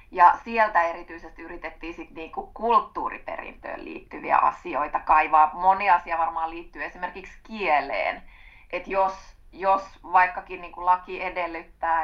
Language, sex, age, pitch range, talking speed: Finnish, female, 20-39, 165-210 Hz, 115 wpm